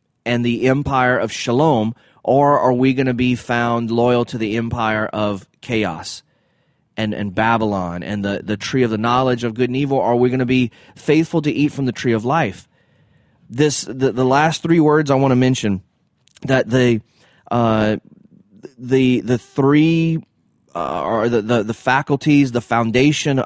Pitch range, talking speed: 115-150 Hz, 175 wpm